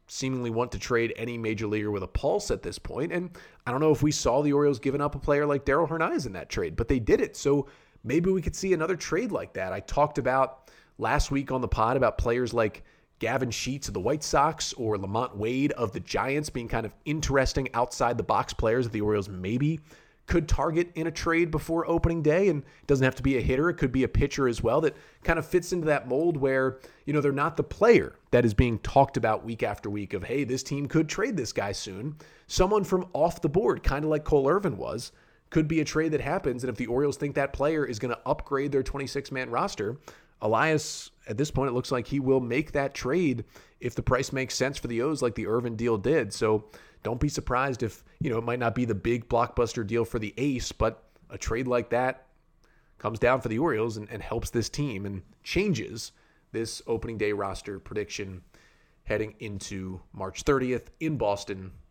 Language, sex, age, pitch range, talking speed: English, male, 30-49, 115-145 Hz, 230 wpm